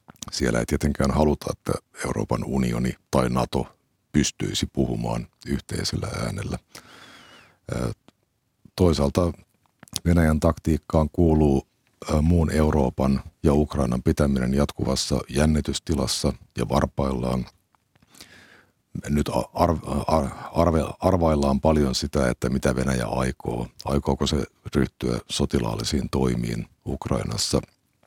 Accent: native